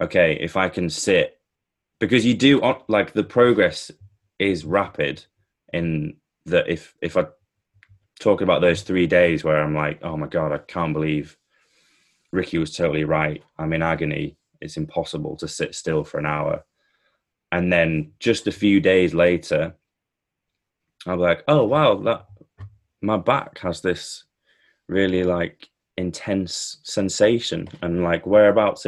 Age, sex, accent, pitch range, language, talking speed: 20-39, male, British, 80-100 Hz, English, 145 wpm